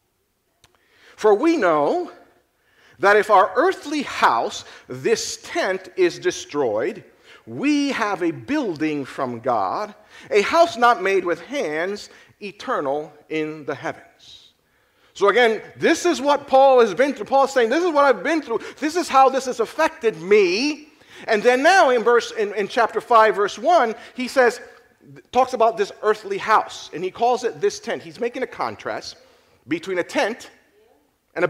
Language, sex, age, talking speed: English, male, 40-59, 165 wpm